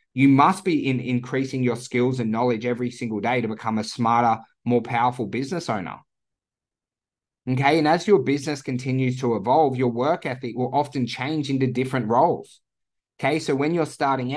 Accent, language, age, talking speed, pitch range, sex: Australian, English, 20-39, 175 wpm, 125-145 Hz, male